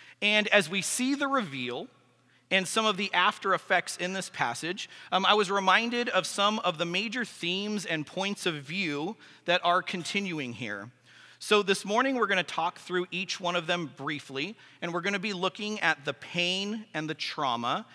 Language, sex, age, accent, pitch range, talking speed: English, male, 40-59, American, 140-195 Hz, 195 wpm